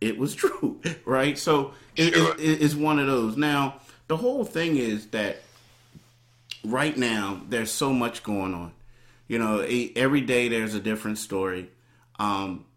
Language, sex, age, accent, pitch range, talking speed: English, male, 30-49, American, 105-125 Hz, 155 wpm